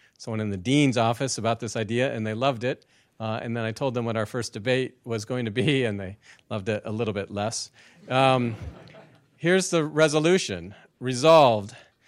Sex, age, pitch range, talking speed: male, 40-59, 105-130 Hz, 195 wpm